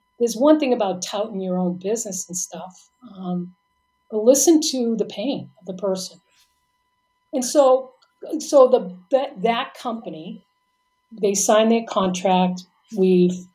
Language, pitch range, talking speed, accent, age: English, 180-225 Hz, 135 wpm, American, 50-69